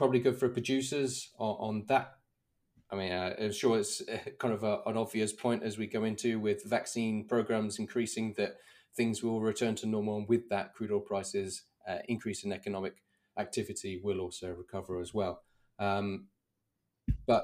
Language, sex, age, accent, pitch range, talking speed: English, male, 20-39, British, 100-115 Hz, 170 wpm